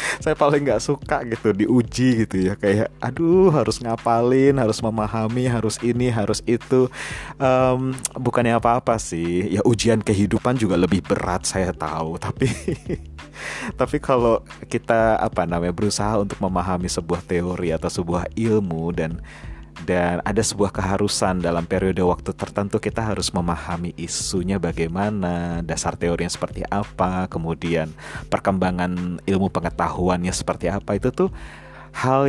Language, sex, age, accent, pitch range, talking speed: Indonesian, male, 30-49, native, 90-120 Hz, 135 wpm